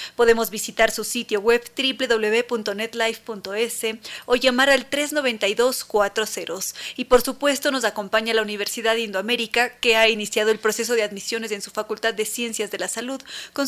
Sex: female